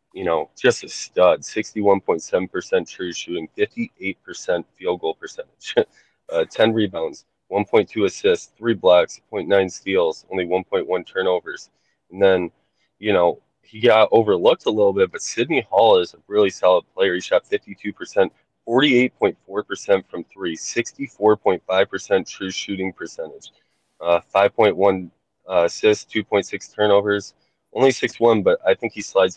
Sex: male